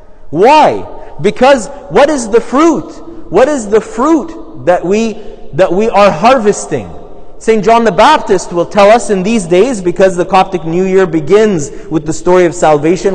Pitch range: 135-205 Hz